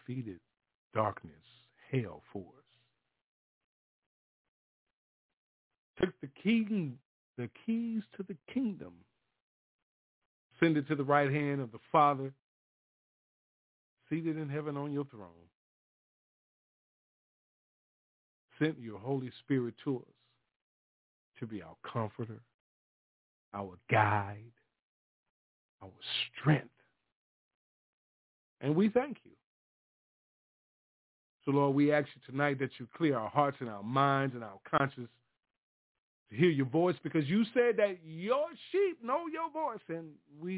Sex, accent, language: male, American, English